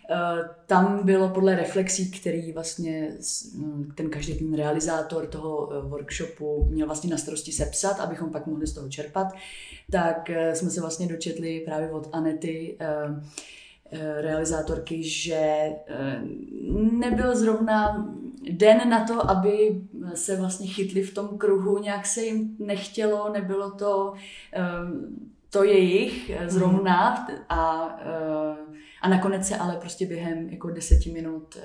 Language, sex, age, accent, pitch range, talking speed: Czech, female, 20-39, native, 155-190 Hz, 125 wpm